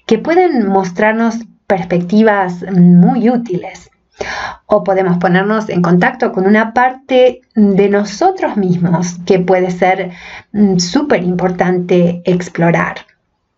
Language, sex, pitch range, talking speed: English, female, 185-220 Hz, 100 wpm